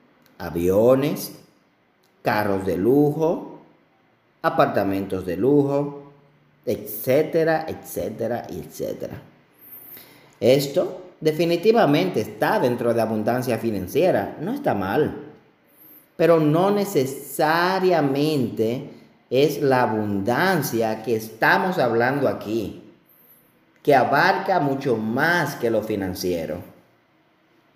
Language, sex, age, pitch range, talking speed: Spanish, male, 40-59, 115-170 Hz, 80 wpm